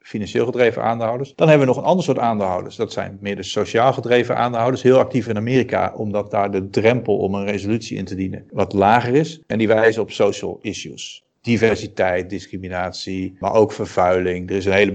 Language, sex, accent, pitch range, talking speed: Dutch, male, Dutch, 100-120 Hz, 200 wpm